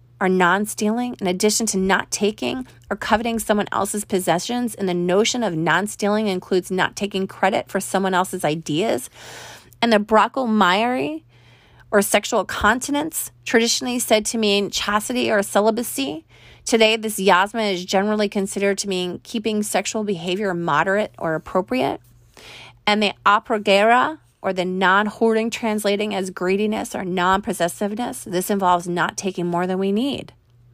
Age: 30-49